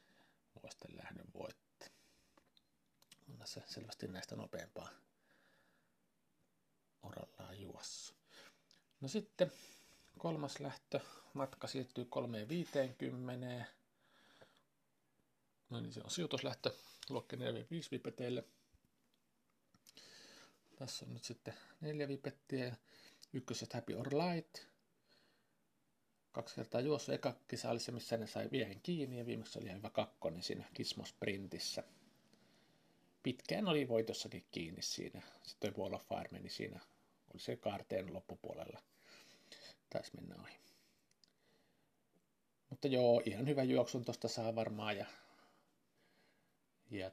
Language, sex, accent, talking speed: Finnish, male, native, 105 wpm